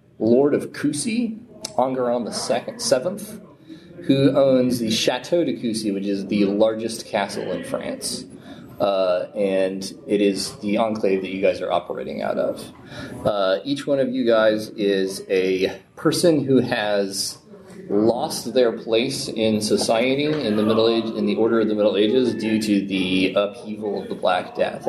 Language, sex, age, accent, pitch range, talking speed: English, male, 30-49, American, 100-130 Hz, 165 wpm